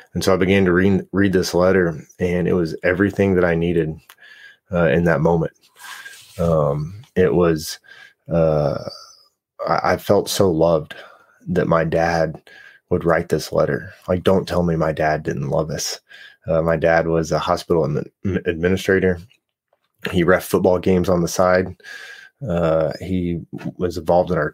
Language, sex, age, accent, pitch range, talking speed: English, male, 20-39, American, 85-95 Hz, 160 wpm